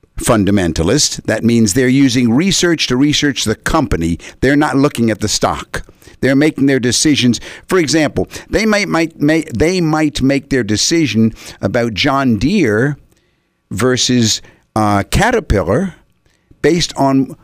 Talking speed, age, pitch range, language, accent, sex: 125 wpm, 50-69, 110-145 Hz, English, American, male